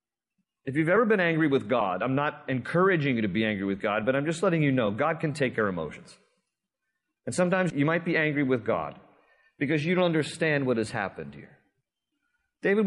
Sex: male